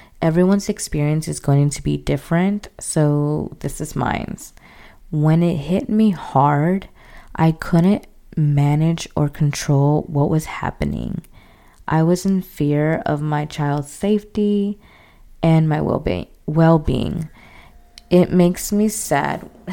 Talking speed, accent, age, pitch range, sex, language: 120 wpm, American, 20-39, 145-170 Hz, female, English